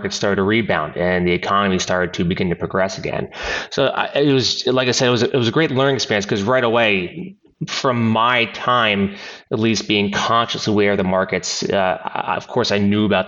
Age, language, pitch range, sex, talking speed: 30-49, English, 95-120 Hz, male, 210 wpm